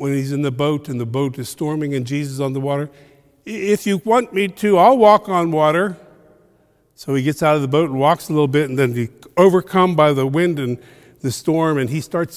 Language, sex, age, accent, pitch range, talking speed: English, male, 50-69, American, 130-170 Hz, 245 wpm